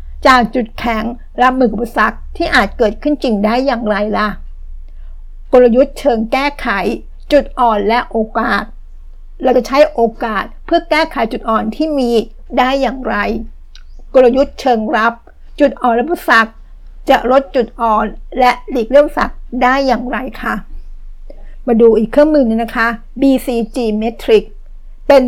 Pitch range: 220-260 Hz